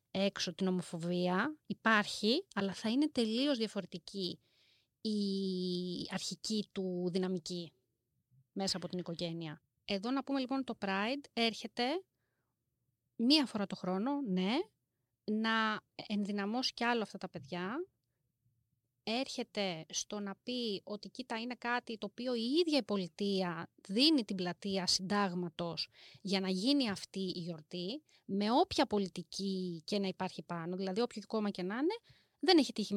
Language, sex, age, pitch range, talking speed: Greek, female, 30-49, 185-250 Hz, 140 wpm